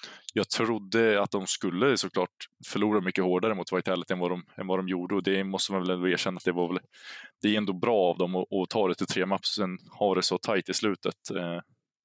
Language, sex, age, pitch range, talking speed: Swedish, male, 20-39, 90-100 Hz, 245 wpm